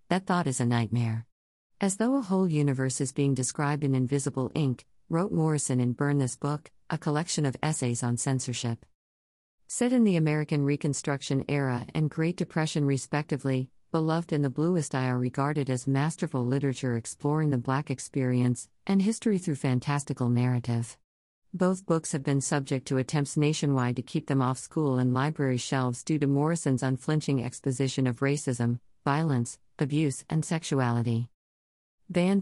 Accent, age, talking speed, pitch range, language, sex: American, 50-69, 155 wpm, 130-155 Hz, English, female